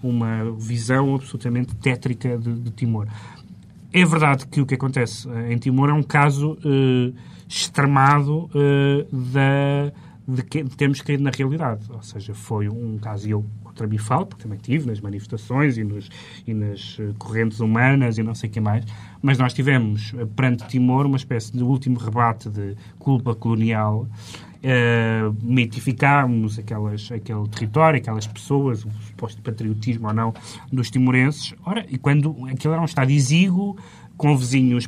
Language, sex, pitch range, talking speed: Portuguese, male, 115-140 Hz, 155 wpm